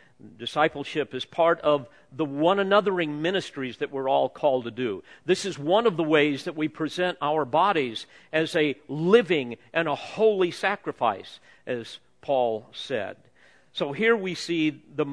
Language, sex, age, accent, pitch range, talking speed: English, male, 50-69, American, 100-165 Hz, 155 wpm